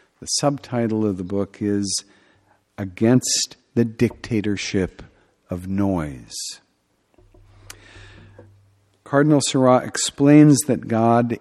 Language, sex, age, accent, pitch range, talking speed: English, male, 50-69, American, 100-125 Hz, 85 wpm